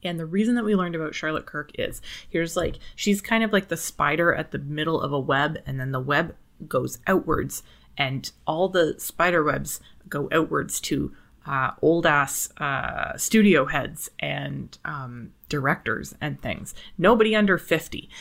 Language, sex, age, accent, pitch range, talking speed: English, female, 20-39, American, 145-195 Hz, 170 wpm